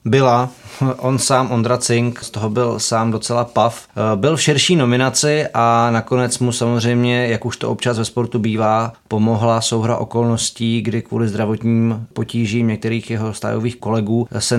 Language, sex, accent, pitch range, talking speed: Czech, male, native, 115-130 Hz, 155 wpm